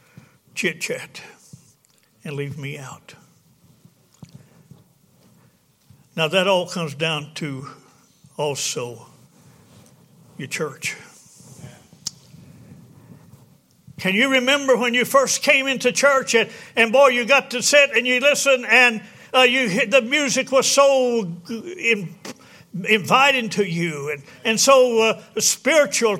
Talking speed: 110 wpm